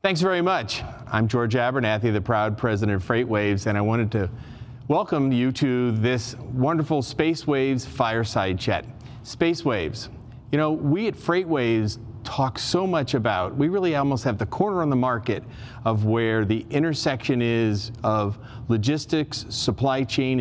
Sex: male